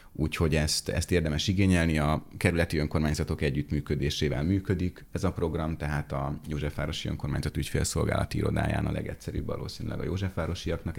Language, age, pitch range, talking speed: Hungarian, 30-49, 75-90 Hz, 130 wpm